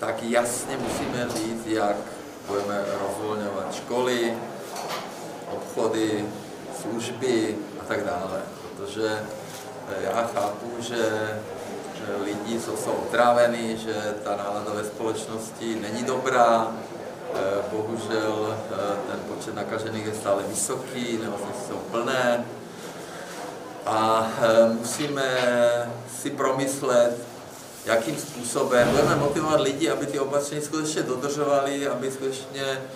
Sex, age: male, 40-59